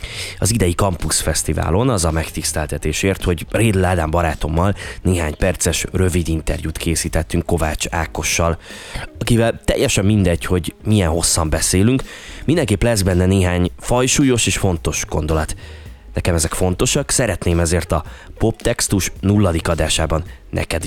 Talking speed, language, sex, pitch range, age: 120 wpm, Hungarian, male, 85-115 Hz, 20-39